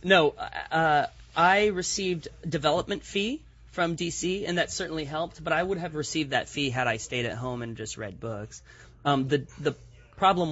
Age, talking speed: 30-49, 185 wpm